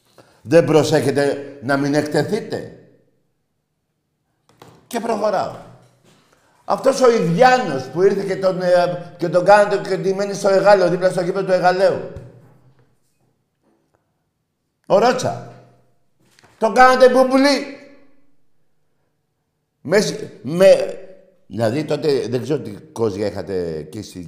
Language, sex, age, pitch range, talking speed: Greek, male, 50-69, 140-200 Hz, 100 wpm